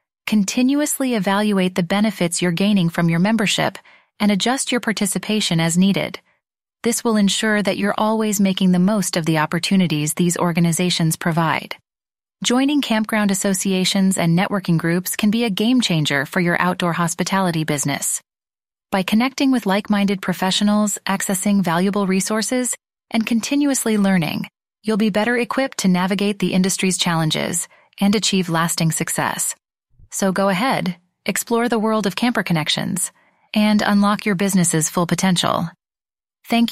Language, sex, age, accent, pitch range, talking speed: English, female, 30-49, American, 180-220 Hz, 140 wpm